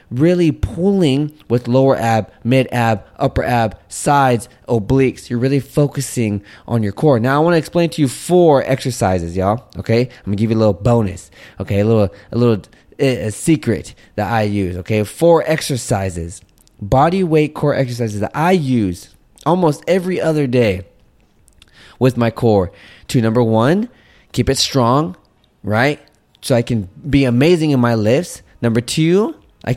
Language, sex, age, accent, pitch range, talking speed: English, male, 20-39, American, 110-145 Hz, 165 wpm